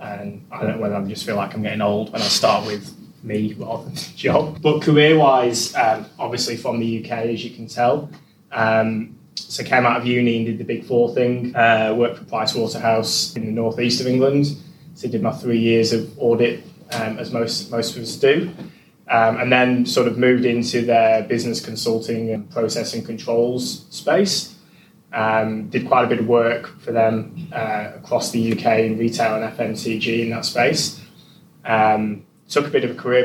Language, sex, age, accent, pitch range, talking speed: English, male, 20-39, British, 115-130 Hz, 195 wpm